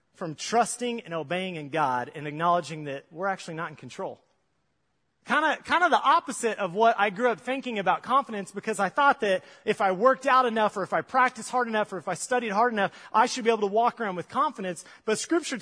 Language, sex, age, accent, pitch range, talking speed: English, male, 30-49, American, 155-210 Hz, 230 wpm